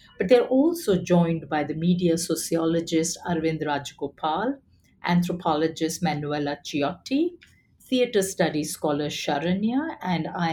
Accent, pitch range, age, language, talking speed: Indian, 150-195 Hz, 50-69, English, 110 wpm